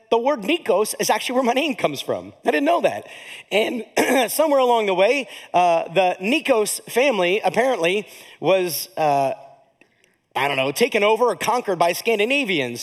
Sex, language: male, English